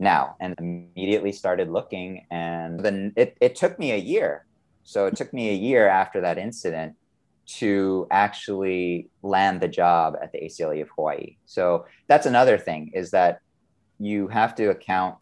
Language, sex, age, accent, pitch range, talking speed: English, male, 30-49, American, 85-105 Hz, 165 wpm